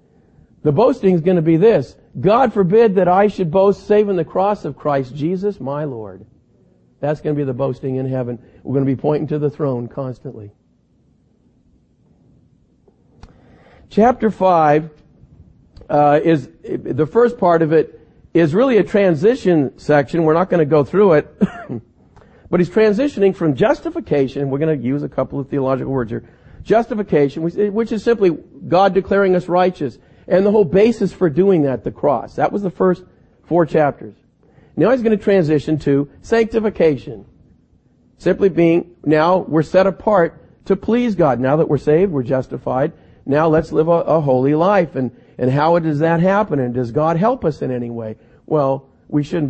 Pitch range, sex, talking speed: 135-185 Hz, male, 175 wpm